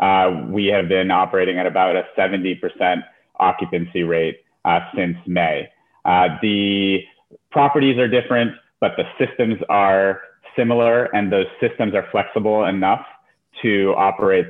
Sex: male